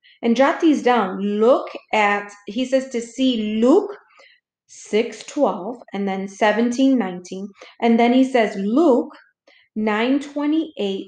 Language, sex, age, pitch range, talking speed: English, female, 40-59, 220-270 Hz, 125 wpm